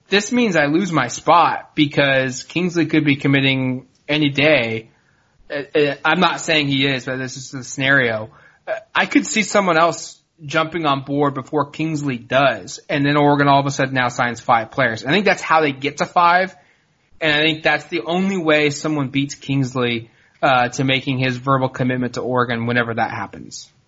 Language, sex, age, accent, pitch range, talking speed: English, male, 20-39, American, 130-155 Hz, 185 wpm